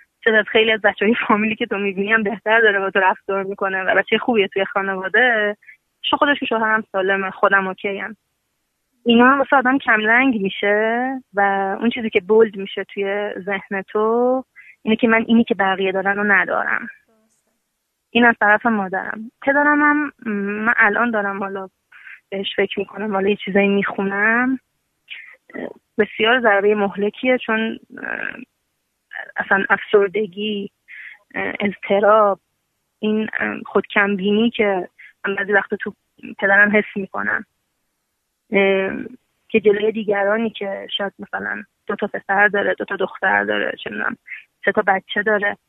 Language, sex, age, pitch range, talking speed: Persian, female, 20-39, 200-225 Hz, 135 wpm